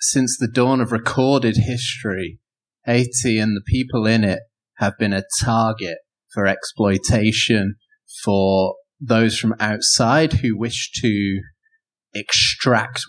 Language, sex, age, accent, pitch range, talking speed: English, male, 30-49, British, 105-125 Hz, 120 wpm